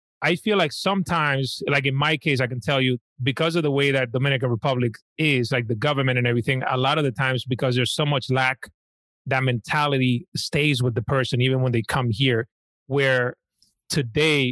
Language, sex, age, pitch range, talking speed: English, male, 30-49, 125-145 Hz, 200 wpm